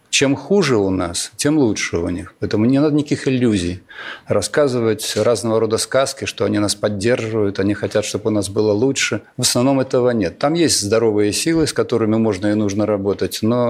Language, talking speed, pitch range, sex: Russian, 190 wpm, 105-125 Hz, male